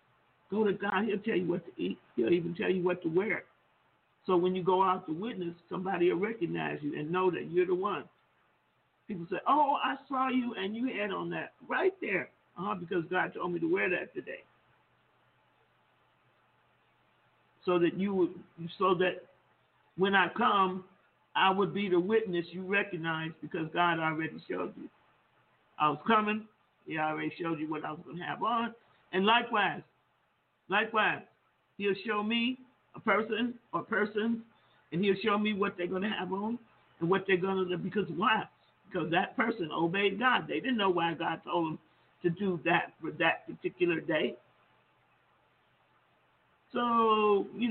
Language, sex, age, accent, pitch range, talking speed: English, male, 50-69, American, 175-220 Hz, 175 wpm